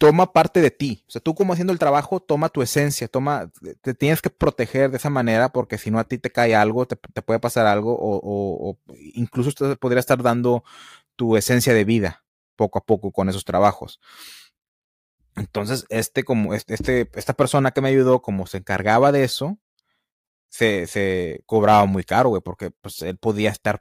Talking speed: 200 wpm